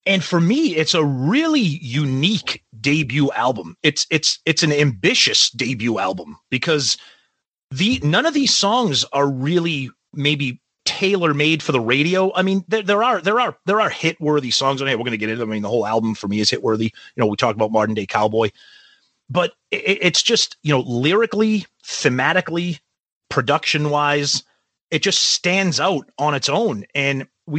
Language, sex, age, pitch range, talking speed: English, male, 30-49, 125-170 Hz, 195 wpm